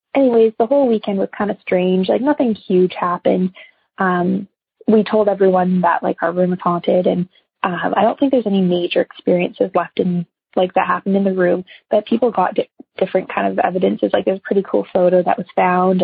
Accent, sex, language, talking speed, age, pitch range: American, female, English, 205 wpm, 20-39, 185-215 Hz